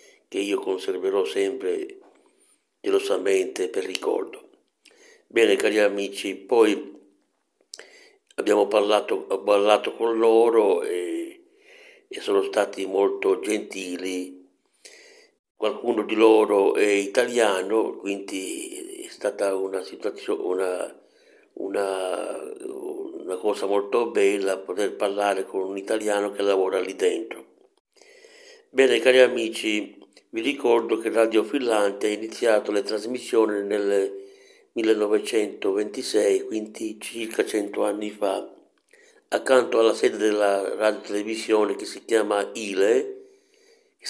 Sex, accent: male, native